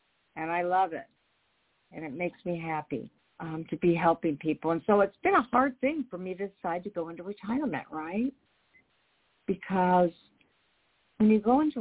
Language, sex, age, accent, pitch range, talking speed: English, female, 50-69, American, 170-245 Hz, 180 wpm